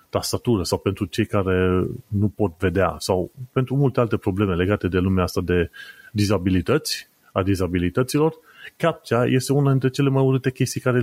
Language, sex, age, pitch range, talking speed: Romanian, male, 30-49, 95-125 Hz, 160 wpm